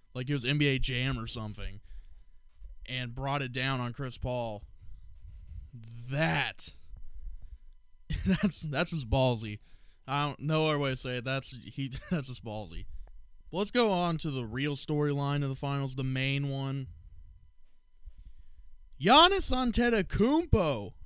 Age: 20-39